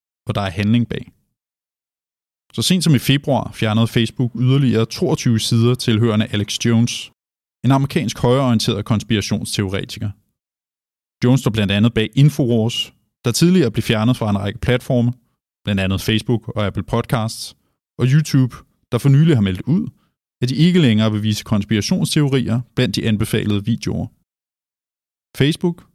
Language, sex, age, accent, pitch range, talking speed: Danish, male, 20-39, native, 110-135 Hz, 145 wpm